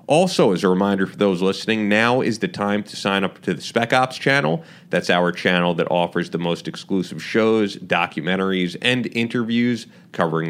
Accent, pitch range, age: American, 90-115 Hz, 30-49